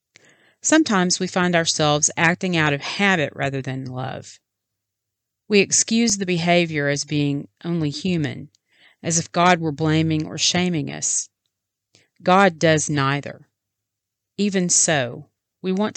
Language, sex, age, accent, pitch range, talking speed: English, female, 40-59, American, 130-175 Hz, 130 wpm